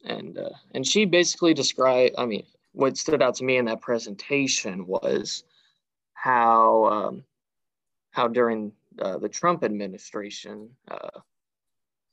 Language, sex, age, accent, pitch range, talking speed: English, male, 20-39, American, 110-125 Hz, 130 wpm